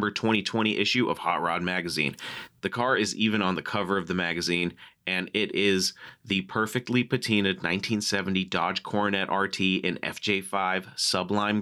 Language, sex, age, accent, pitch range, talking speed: English, male, 30-49, American, 90-105 Hz, 150 wpm